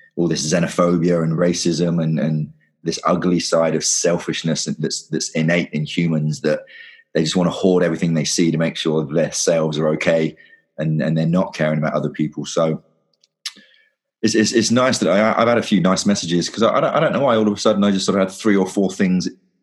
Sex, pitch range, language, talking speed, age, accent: male, 80-85 Hz, English, 225 wpm, 30-49, British